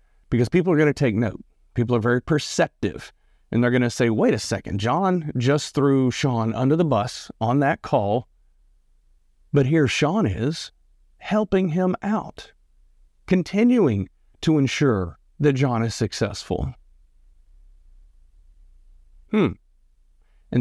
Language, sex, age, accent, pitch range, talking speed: English, male, 40-59, American, 90-140 Hz, 130 wpm